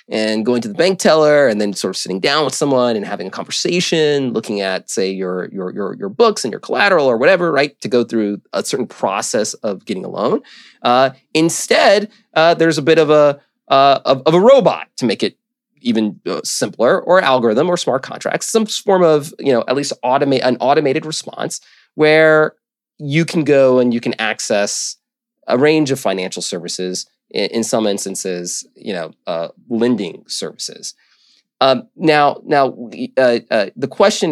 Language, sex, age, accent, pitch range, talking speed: English, male, 30-49, American, 115-165 Hz, 180 wpm